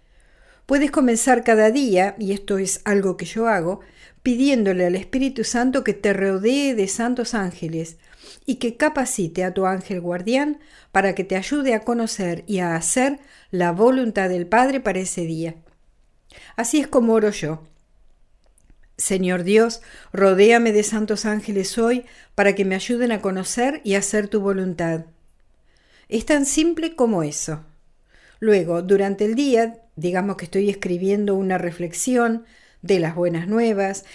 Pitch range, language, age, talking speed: 180-245 Hz, Spanish, 60-79, 150 wpm